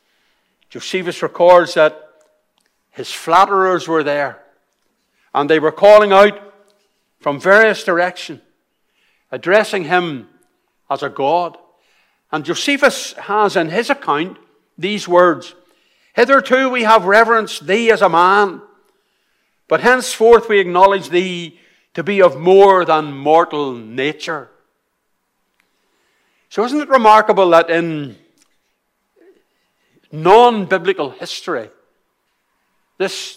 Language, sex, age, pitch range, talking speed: English, male, 60-79, 140-200 Hz, 105 wpm